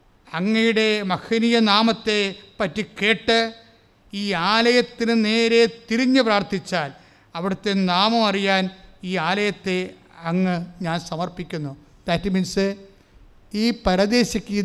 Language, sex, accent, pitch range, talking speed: English, male, Indian, 170-230 Hz, 80 wpm